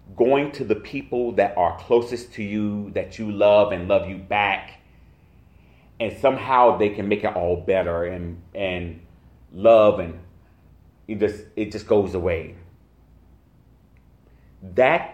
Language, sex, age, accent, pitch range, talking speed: English, male, 30-49, American, 90-145 Hz, 140 wpm